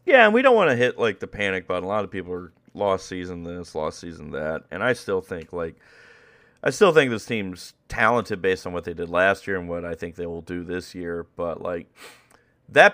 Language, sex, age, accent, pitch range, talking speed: English, male, 30-49, American, 90-125 Hz, 240 wpm